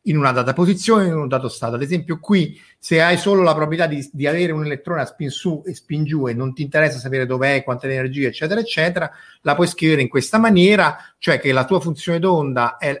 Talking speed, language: 240 wpm, Italian